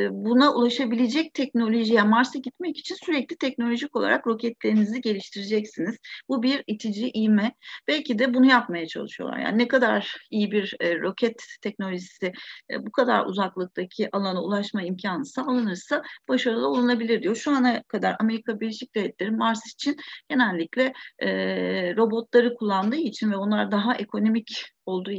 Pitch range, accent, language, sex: 195-250 Hz, native, Turkish, female